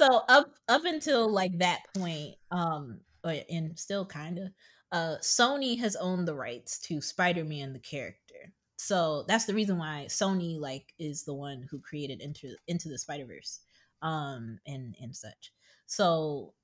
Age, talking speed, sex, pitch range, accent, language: 20-39, 160 wpm, female, 135-185 Hz, American, English